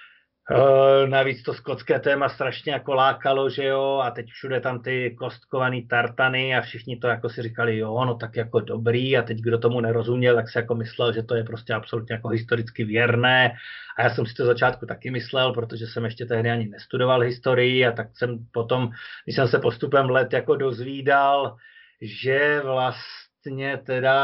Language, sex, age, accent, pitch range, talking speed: Czech, male, 30-49, native, 120-135 Hz, 185 wpm